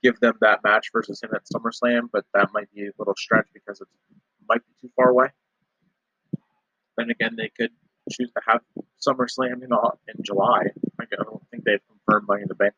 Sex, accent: male, American